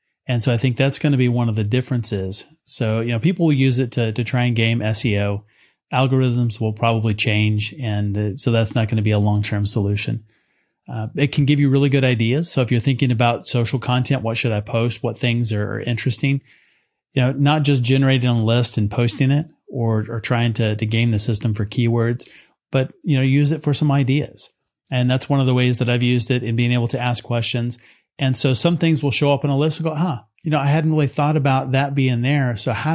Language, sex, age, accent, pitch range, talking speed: English, male, 30-49, American, 115-135 Hz, 240 wpm